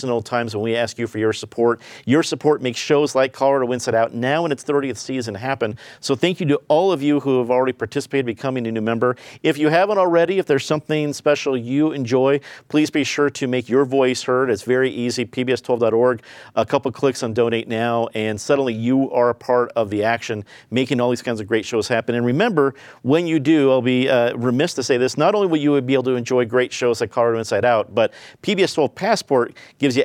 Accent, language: American, English